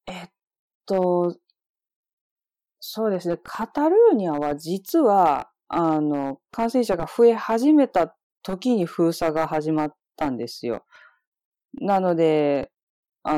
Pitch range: 150-230 Hz